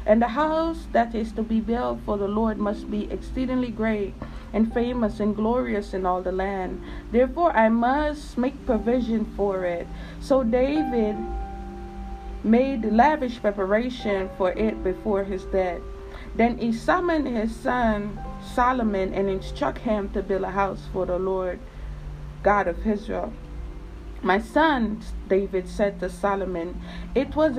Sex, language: female, English